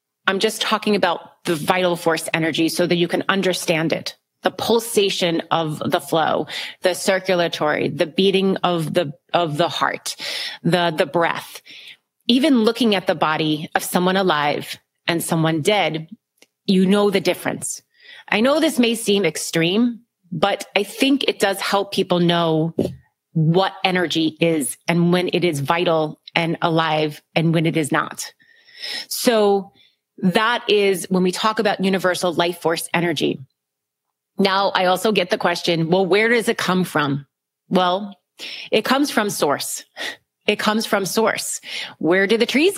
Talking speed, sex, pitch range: 155 wpm, female, 165-210 Hz